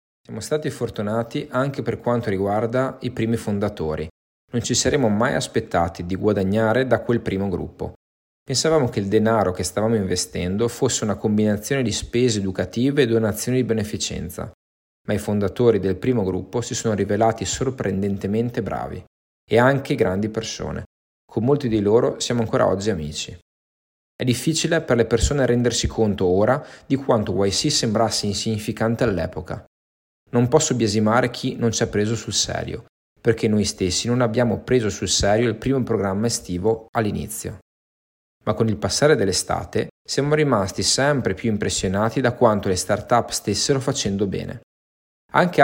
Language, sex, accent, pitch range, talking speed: Italian, male, native, 100-125 Hz, 155 wpm